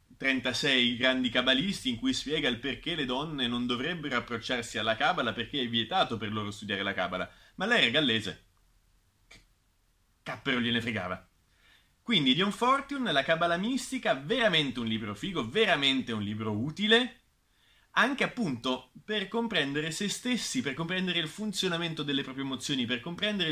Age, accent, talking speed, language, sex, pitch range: 30-49, native, 150 wpm, Italian, male, 115-160 Hz